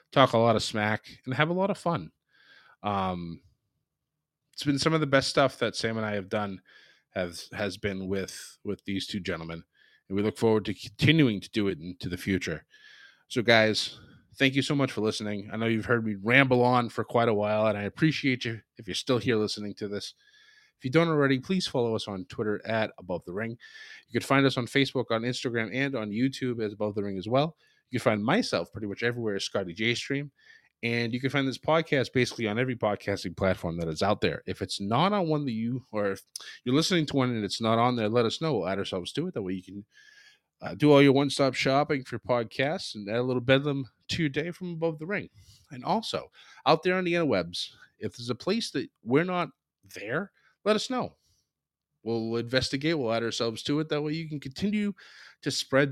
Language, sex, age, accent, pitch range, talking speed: English, male, 30-49, American, 105-145 Hz, 230 wpm